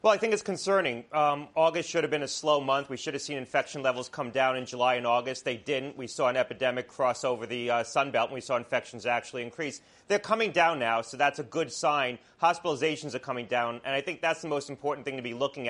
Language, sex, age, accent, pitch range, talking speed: English, male, 30-49, American, 130-160 Hz, 255 wpm